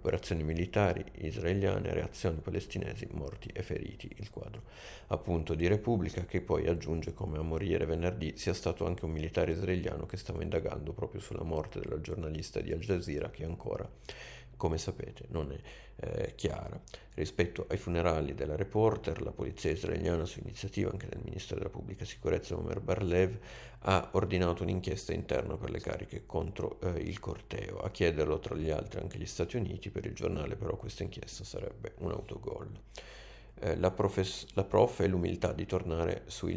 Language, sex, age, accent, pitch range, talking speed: Italian, male, 50-69, native, 85-100 Hz, 165 wpm